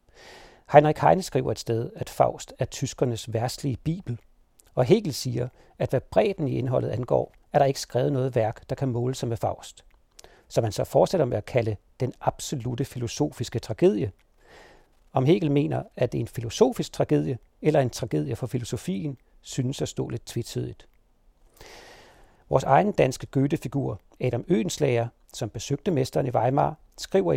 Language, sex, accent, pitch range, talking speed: Danish, male, native, 120-145 Hz, 165 wpm